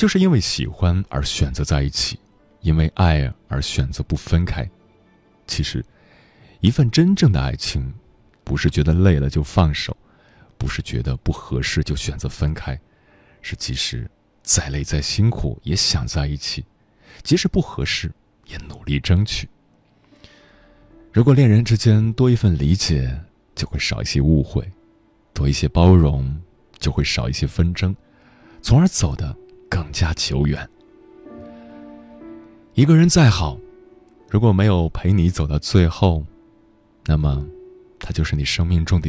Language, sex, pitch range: Chinese, male, 75-105 Hz